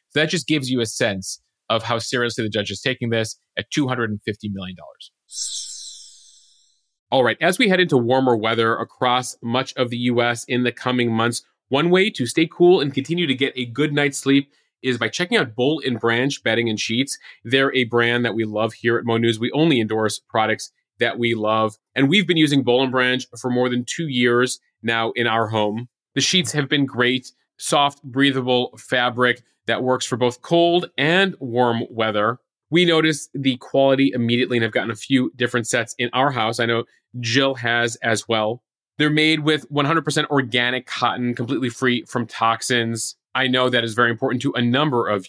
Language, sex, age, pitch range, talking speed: English, male, 30-49, 115-140 Hz, 195 wpm